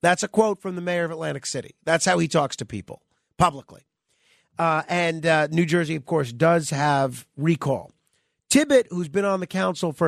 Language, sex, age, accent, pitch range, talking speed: English, male, 50-69, American, 155-220 Hz, 195 wpm